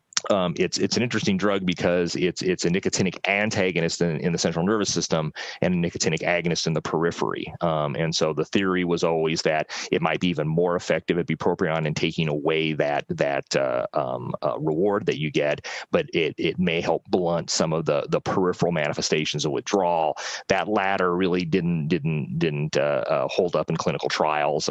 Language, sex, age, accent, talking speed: Italian, male, 30-49, American, 195 wpm